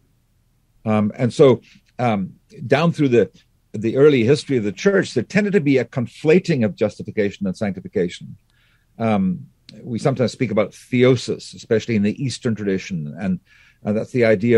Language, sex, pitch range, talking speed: English, male, 105-135 Hz, 160 wpm